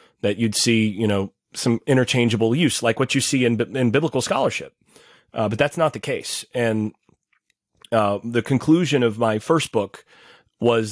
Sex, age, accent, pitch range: male, 30-49, American, 110-135 Hz